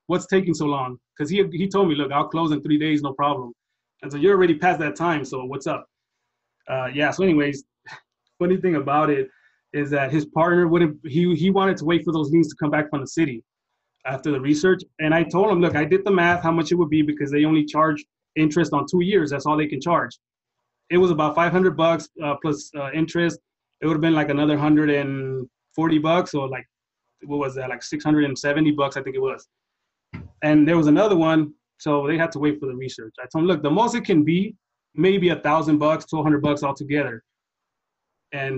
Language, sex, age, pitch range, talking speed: English, male, 20-39, 140-165 Hz, 235 wpm